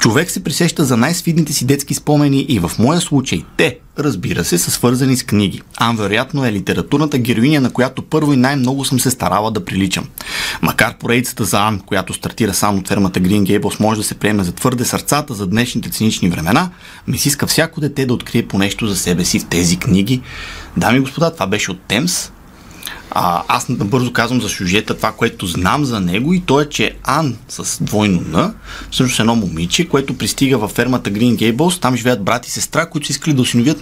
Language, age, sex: Bulgarian, 30-49, male